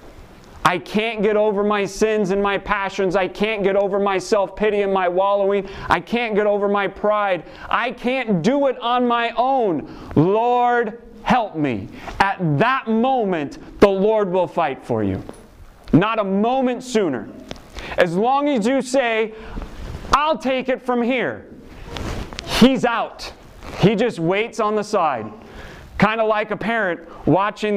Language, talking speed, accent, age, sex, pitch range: English, 155 wpm, American, 30-49, male, 160-220 Hz